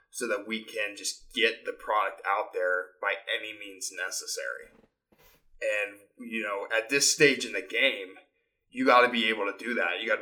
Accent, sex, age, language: American, male, 20-39, English